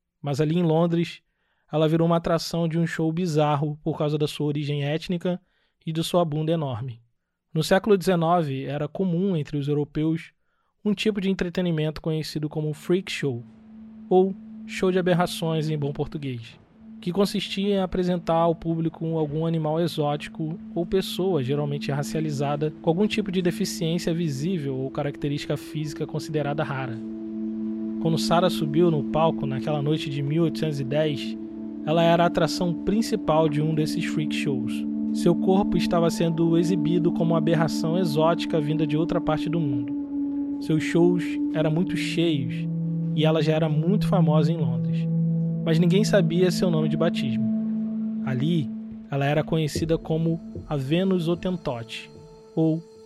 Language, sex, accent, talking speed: Portuguese, male, Brazilian, 150 wpm